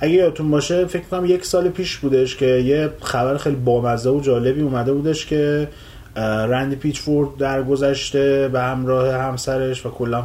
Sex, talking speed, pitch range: male, 170 wpm, 110-150 Hz